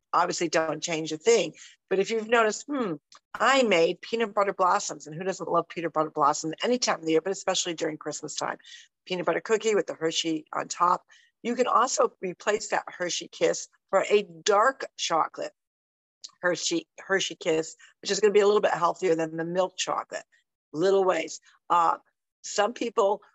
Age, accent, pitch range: 50-69, American, 165-210 Hz